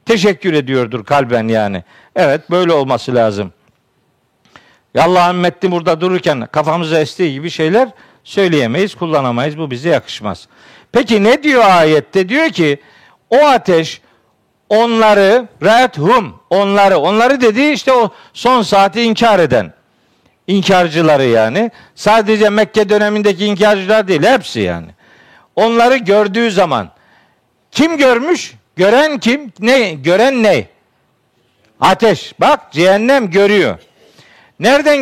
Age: 50-69